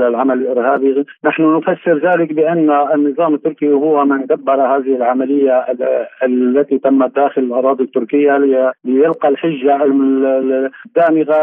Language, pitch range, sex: Arabic, 130-150 Hz, male